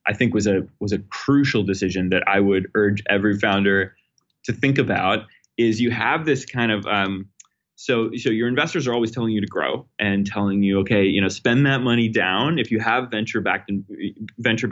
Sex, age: male, 20-39